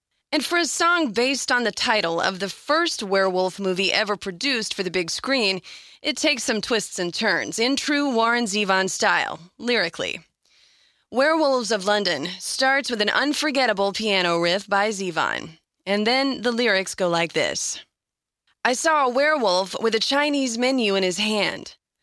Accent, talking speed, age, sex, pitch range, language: American, 165 wpm, 20-39, female, 200-270 Hz, English